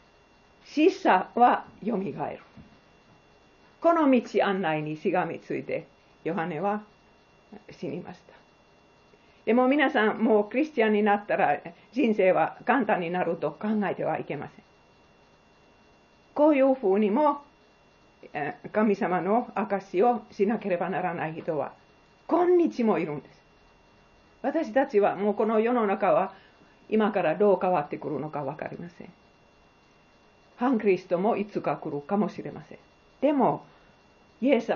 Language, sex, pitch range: Japanese, female, 170-235 Hz